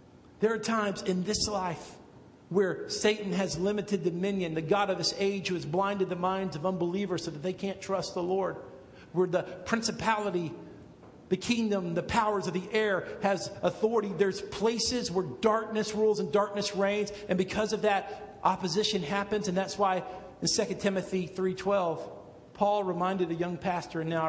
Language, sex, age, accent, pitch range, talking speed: English, male, 50-69, American, 175-205 Hz, 175 wpm